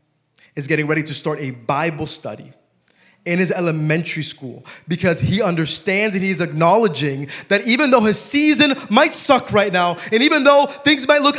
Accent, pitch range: American, 180-285 Hz